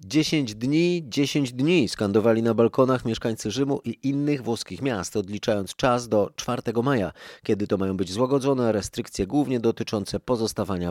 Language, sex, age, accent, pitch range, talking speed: Polish, male, 30-49, native, 95-125 Hz, 150 wpm